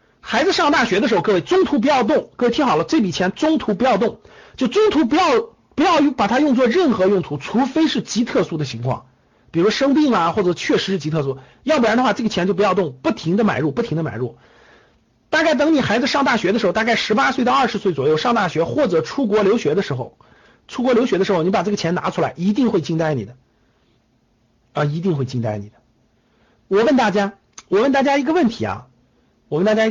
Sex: male